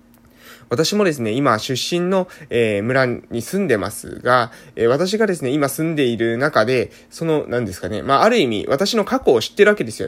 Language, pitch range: Japanese, 130-190 Hz